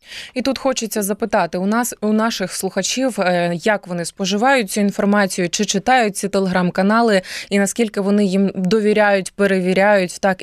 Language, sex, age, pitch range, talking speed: Ukrainian, female, 20-39, 185-220 Hz, 145 wpm